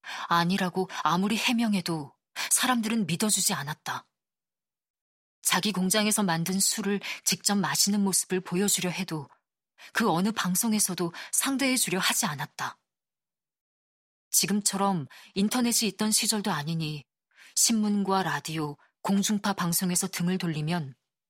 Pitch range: 170-210 Hz